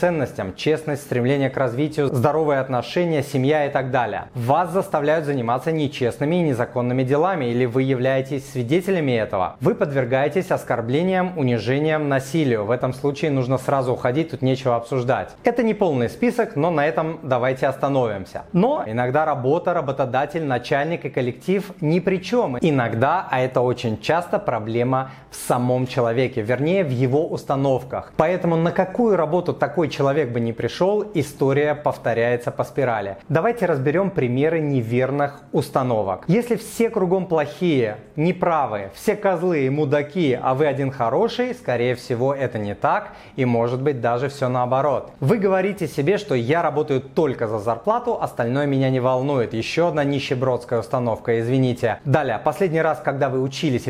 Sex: male